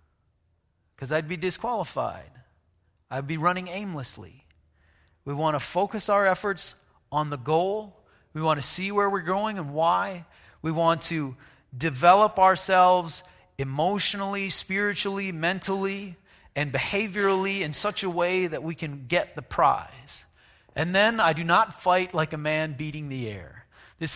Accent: American